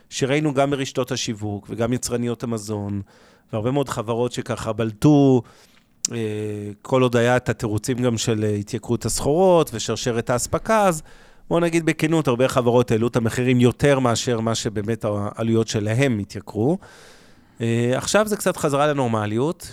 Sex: male